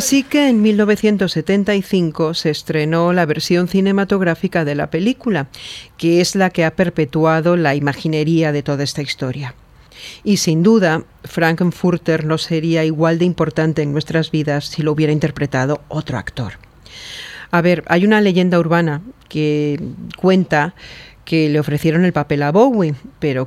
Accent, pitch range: Spanish, 150-175 Hz